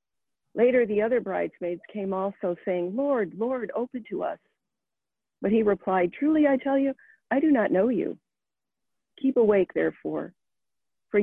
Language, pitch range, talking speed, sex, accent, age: English, 155-215 Hz, 150 wpm, female, American, 50-69